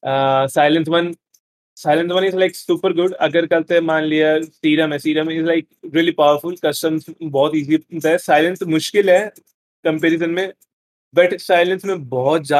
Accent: Indian